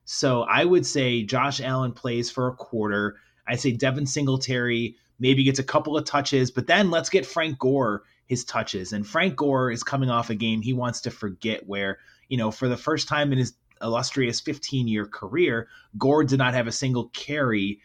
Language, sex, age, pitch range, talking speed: English, male, 30-49, 115-140 Hz, 200 wpm